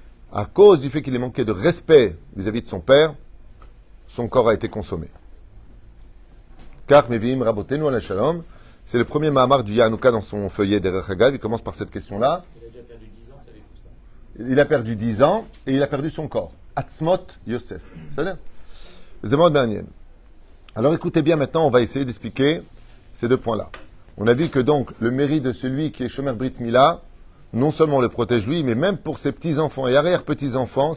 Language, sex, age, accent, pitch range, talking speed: French, male, 30-49, French, 110-150 Hz, 165 wpm